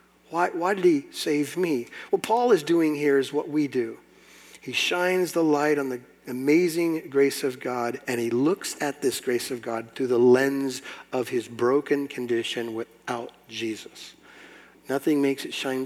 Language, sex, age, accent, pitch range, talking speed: English, male, 50-69, American, 125-160 Hz, 175 wpm